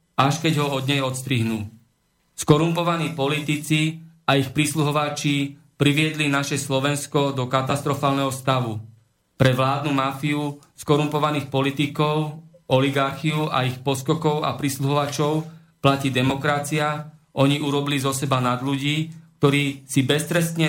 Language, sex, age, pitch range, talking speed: Slovak, male, 40-59, 130-150 Hz, 115 wpm